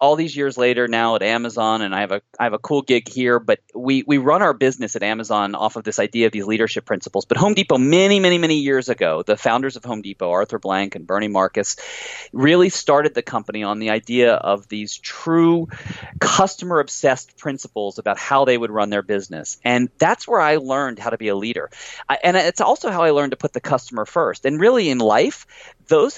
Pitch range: 120-175 Hz